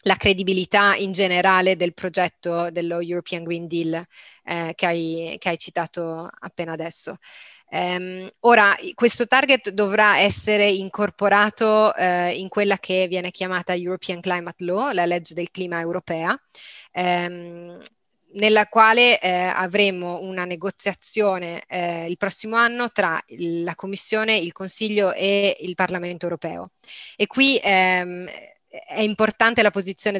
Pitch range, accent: 180-205 Hz, native